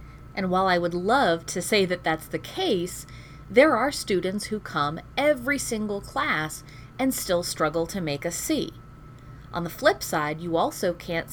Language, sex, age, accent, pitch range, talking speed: English, female, 30-49, American, 155-220 Hz, 175 wpm